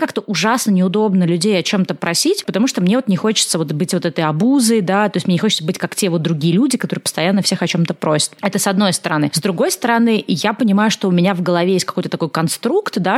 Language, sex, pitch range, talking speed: Russian, female, 175-230 Hz, 250 wpm